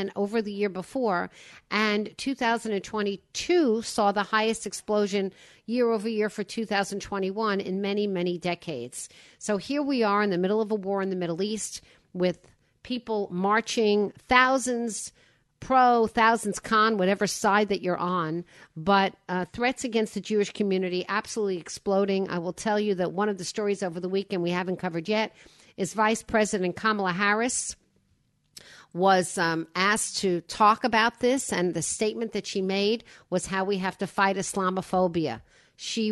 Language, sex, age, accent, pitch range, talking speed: English, female, 50-69, American, 175-215 Hz, 160 wpm